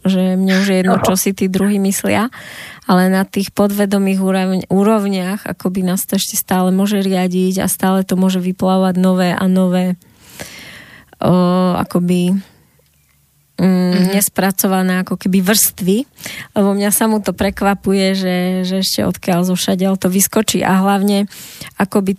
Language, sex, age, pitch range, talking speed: Slovak, female, 20-39, 185-200 Hz, 145 wpm